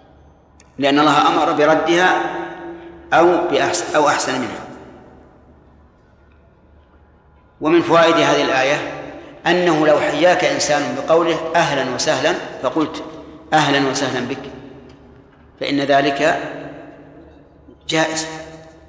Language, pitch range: Arabic, 135-160 Hz